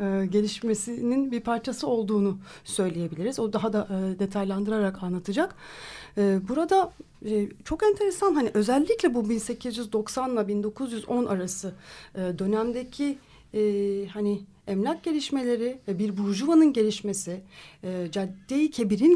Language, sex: Turkish, female